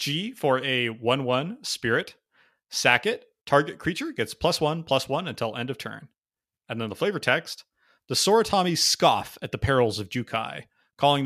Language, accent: English, American